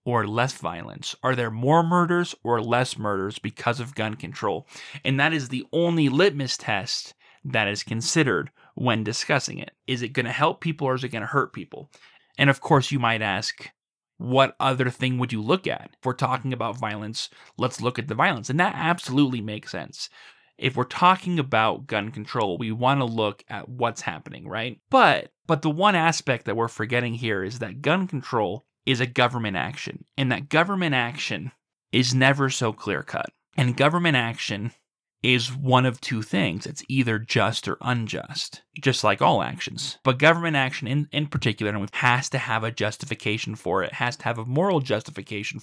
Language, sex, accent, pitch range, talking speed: English, male, American, 115-145 Hz, 190 wpm